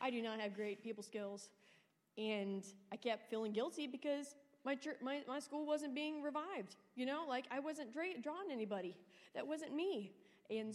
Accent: American